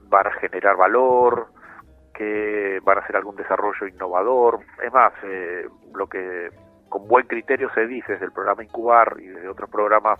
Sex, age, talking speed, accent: male, 40-59, 170 wpm, Argentinian